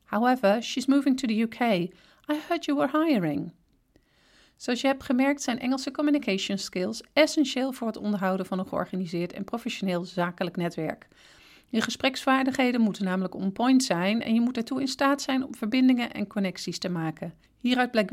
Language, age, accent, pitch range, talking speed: Dutch, 40-59, Dutch, 195-265 Hz, 170 wpm